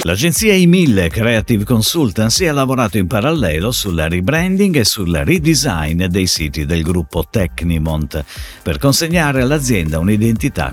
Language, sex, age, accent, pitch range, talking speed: Italian, male, 50-69, native, 85-145 Hz, 125 wpm